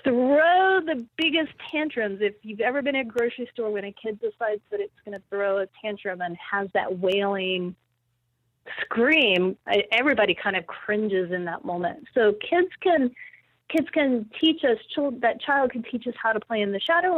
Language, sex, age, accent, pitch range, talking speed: English, female, 30-49, American, 190-245 Hz, 180 wpm